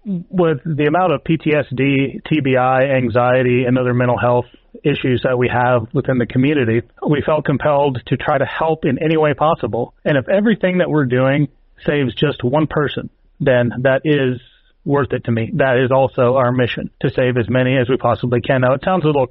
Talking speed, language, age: 200 wpm, English, 30-49